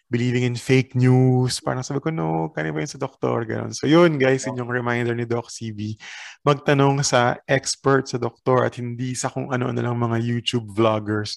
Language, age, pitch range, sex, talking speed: Filipino, 20-39, 110-135 Hz, male, 180 wpm